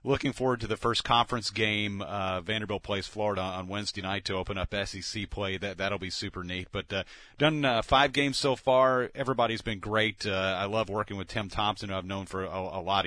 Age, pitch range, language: 40-59, 95-110 Hz, English